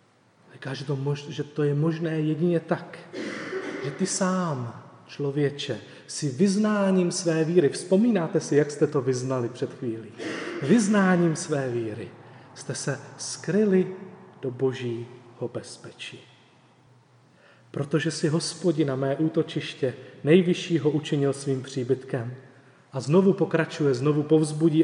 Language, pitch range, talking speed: Czech, 130-165 Hz, 110 wpm